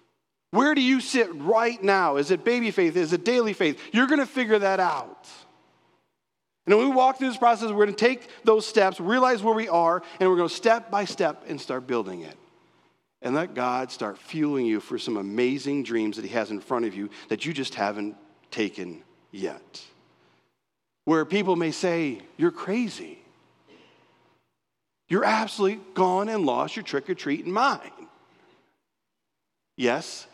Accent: American